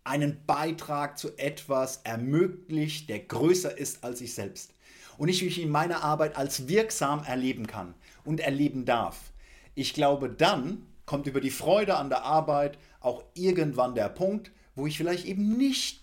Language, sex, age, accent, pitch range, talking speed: German, male, 50-69, German, 95-145 Hz, 160 wpm